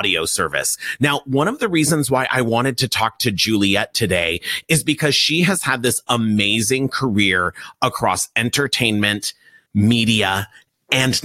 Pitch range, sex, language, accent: 100-145 Hz, male, English, American